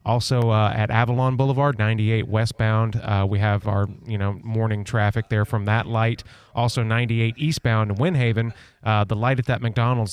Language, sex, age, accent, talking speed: English, male, 30-49, American, 180 wpm